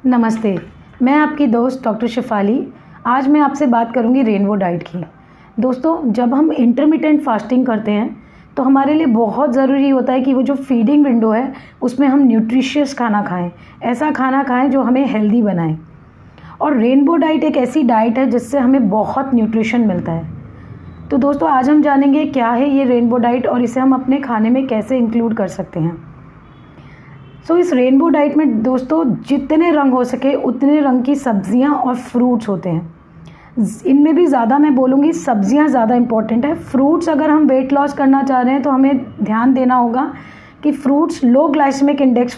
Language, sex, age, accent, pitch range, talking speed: Hindi, female, 30-49, native, 225-280 Hz, 180 wpm